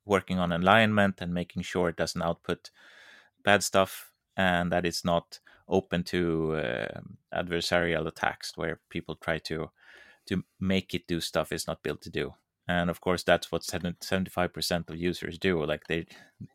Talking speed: 165 wpm